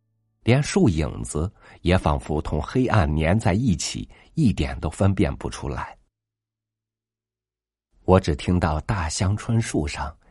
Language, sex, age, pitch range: Chinese, male, 50-69, 75-110 Hz